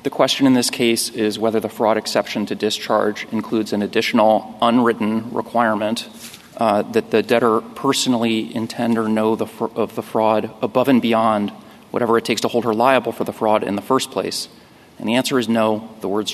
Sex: male